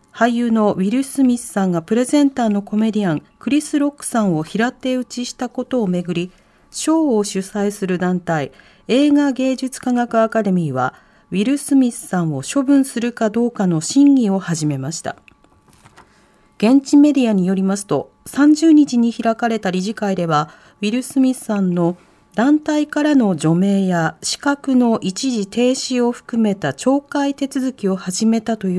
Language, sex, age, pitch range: Japanese, female, 40-59, 195-260 Hz